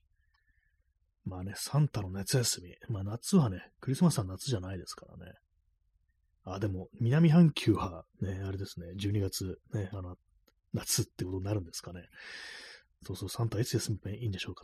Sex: male